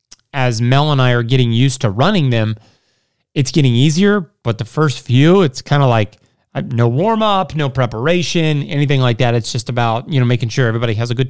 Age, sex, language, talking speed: 30-49, male, English, 220 wpm